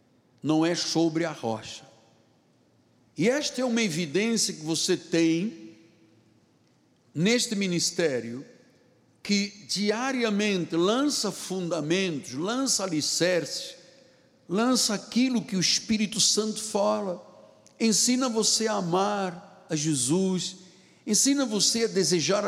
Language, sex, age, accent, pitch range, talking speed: Portuguese, male, 60-79, Brazilian, 145-210 Hz, 100 wpm